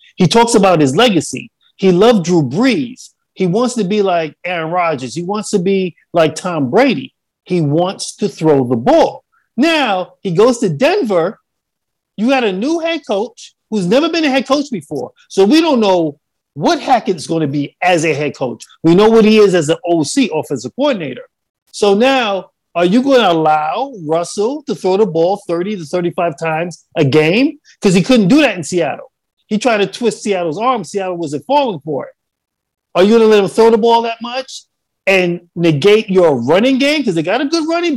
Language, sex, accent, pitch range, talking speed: English, male, American, 170-250 Hz, 200 wpm